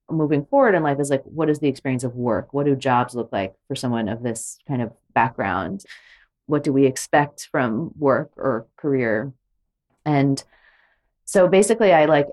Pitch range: 130-165 Hz